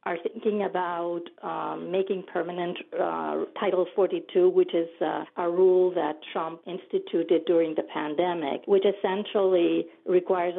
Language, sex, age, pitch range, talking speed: English, female, 40-59, 170-200 Hz, 130 wpm